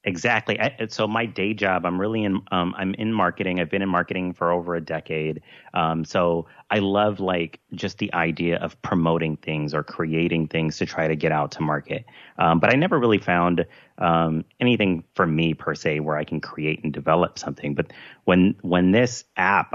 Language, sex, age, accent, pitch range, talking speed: English, male, 30-49, American, 80-90 Hz, 200 wpm